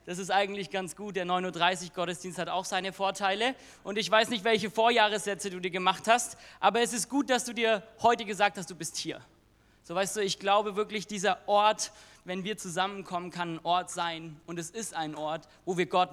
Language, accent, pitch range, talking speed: German, German, 175-215 Hz, 220 wpm